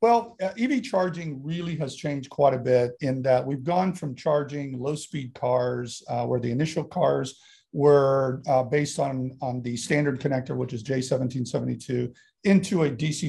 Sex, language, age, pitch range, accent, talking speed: male, English, 50-69, 125-150 Hz, American, 165 wpm